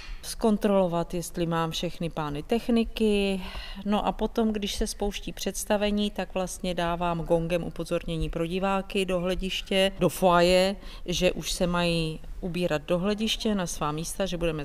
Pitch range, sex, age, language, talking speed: 165-200 Hz, female, 40-59, Czech, 145 wpm